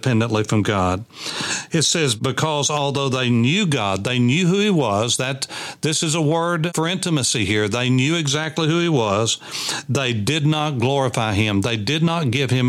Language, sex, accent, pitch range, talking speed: English, male, American, 115-150 Hz, 185 wpm